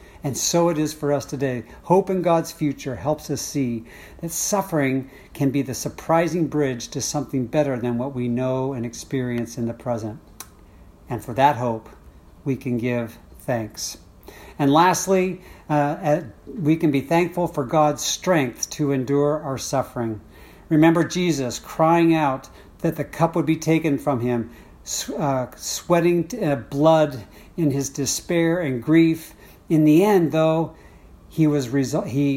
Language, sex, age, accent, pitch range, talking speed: English, male, 50-69, American, 130-160 Hz, 155 wpm